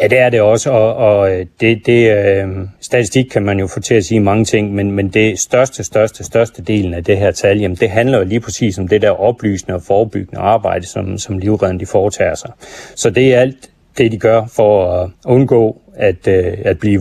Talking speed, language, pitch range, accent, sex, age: 215 wpm, Danish, 95-115 Hz, native, male, 30-49